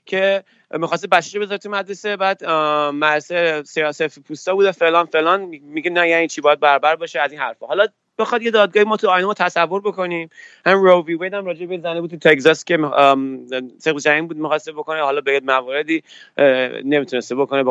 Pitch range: 150-205 Hz